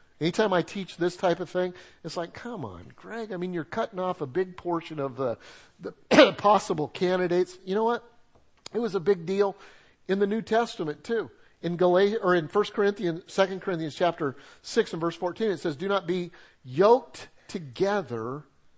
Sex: male